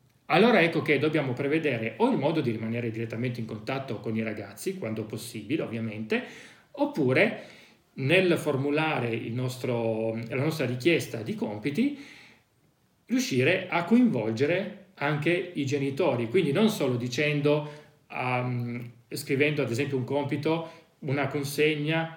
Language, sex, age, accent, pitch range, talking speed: Italian, male, 40-59, native, 125-170 Hz, 125 wpm